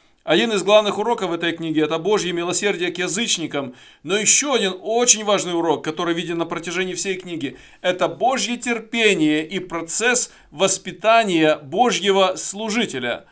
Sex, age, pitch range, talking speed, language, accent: male, 40-59, 160-220 Hz, 140 wpm, Russian, native